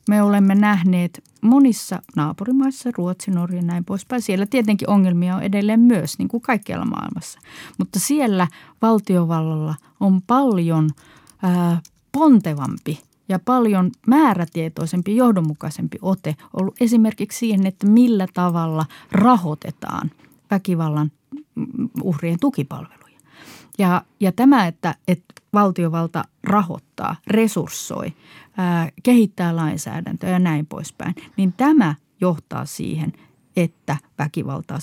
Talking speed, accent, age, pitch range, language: 105 wpm, native, 30-49, 160-205 Hz, Finnish